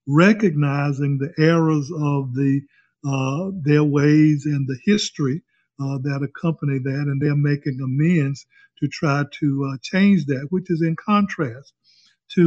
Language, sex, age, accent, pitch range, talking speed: English, male, 50-69, American, 140-165 Hz, 145 wpm